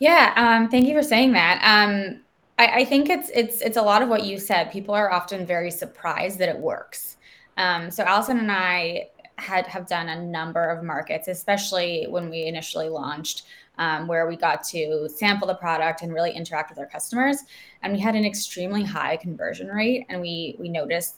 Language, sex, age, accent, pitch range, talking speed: English, female, 20-39, American, 165-210 Hz, 200 wpm